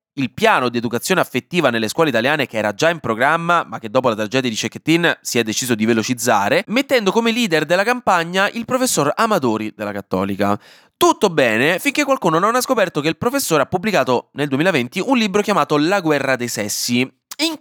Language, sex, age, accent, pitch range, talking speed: Italian, male, 20-39, native, 125-195 Hz, 195 wpm